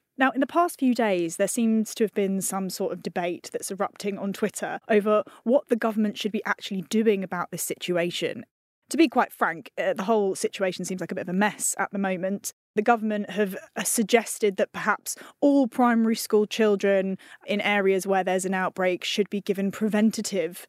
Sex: female